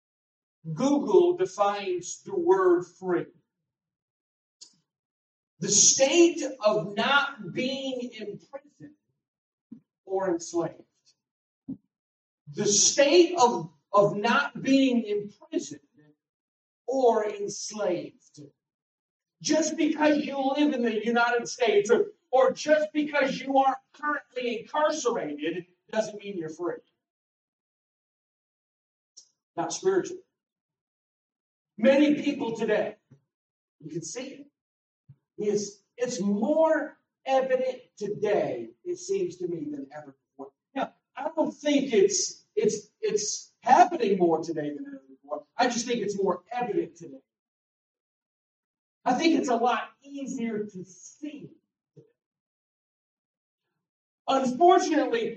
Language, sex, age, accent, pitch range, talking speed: English, male, 40-59, American, 200-300 Hz, 100 wpm